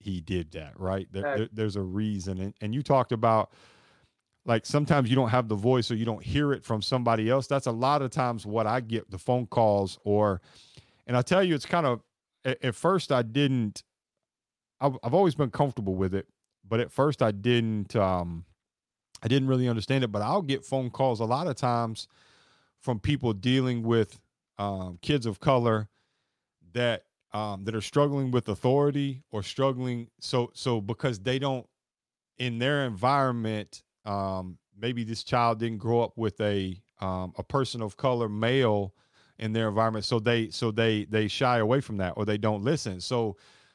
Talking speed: 185 wpm